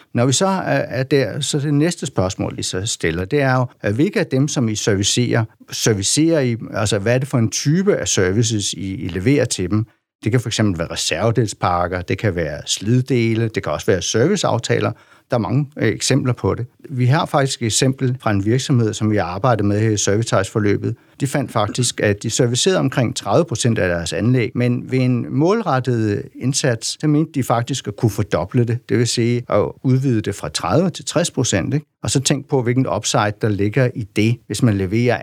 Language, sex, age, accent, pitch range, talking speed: Danish, male, 60-79, native, 105-140 Hz, 205 wpm